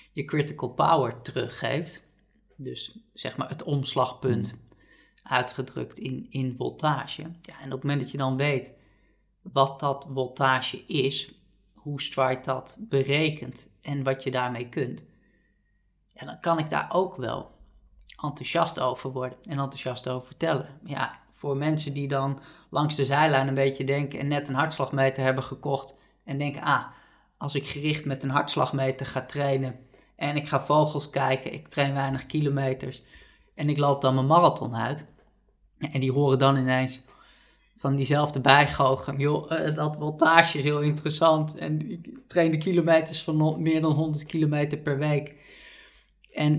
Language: Dutch